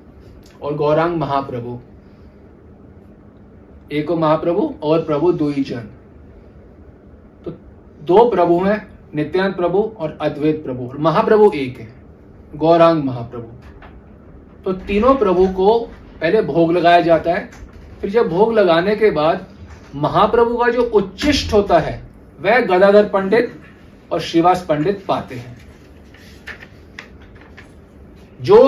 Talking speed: 110 wpm